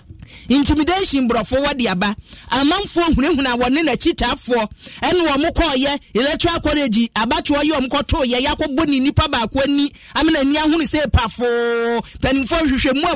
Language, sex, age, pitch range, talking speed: English, male, 30-49, 240-300 Hz, 160 wpm